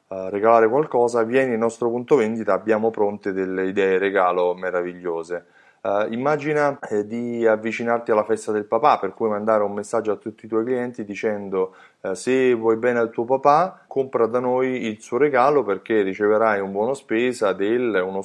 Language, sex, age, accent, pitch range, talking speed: Italian, male, 20-39, native, 95-115 Hz, 165 wpm